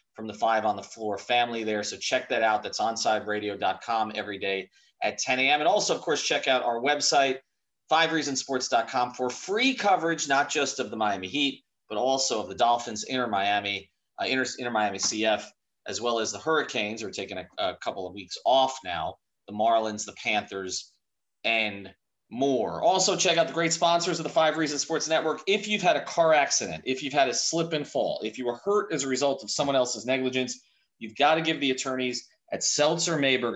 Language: English